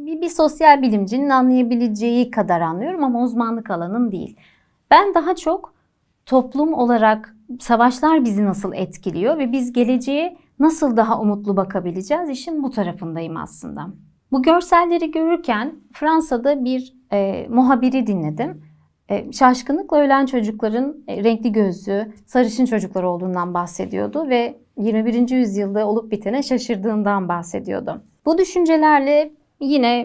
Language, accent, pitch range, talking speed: Turkish, native, 205-275 Hz, 120 wpm